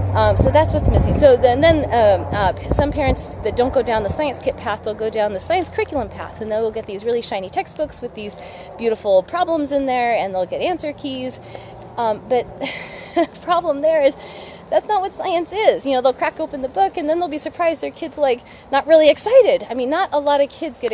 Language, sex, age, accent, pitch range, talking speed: English, female, 30-49, American, 220-310 Hz, 235 wpm